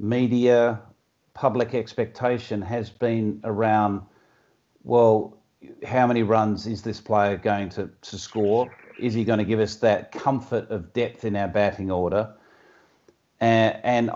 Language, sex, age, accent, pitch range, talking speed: English, male, 50-69, Australian, 105-120 Hz, 140 wpm